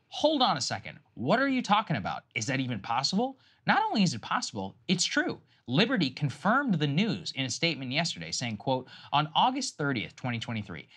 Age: 30-49